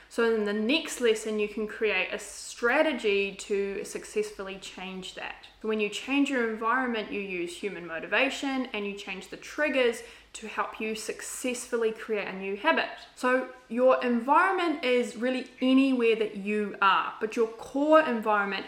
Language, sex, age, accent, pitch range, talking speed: English, female, 20-39, Australian, 205-265 Hz, 155 wpm